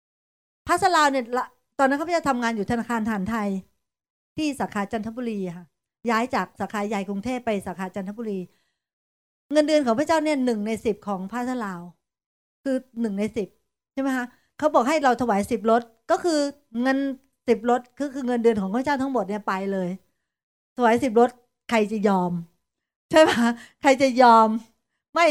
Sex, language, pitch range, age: female, Thai, 215-270 Hz, 60-79